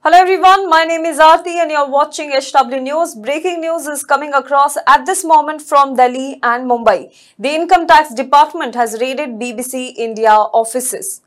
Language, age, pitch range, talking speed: English, 20-39, 250-310 Hz, 175 wpm